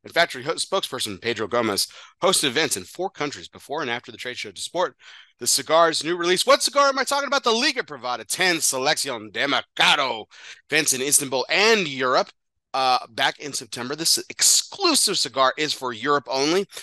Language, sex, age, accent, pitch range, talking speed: English, male, 30-49, American, 115-175 Hz, 180 wpm